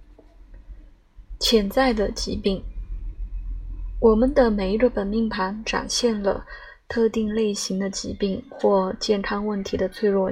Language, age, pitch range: Chinese, 20-39, 200-245 Hz